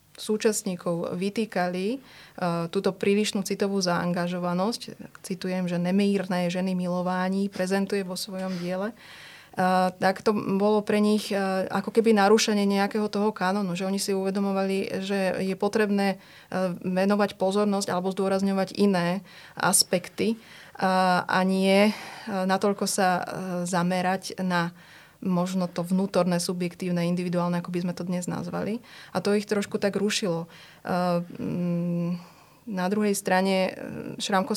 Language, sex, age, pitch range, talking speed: Slovak, female, 30-49, 185-205 Hz, 115 wpm